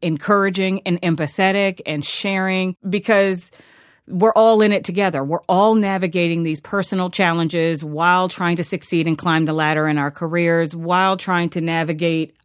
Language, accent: English, American